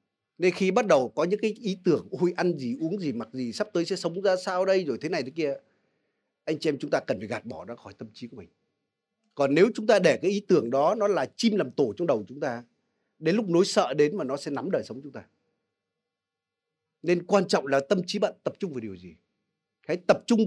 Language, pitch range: Vietnamese, 155-215 Hz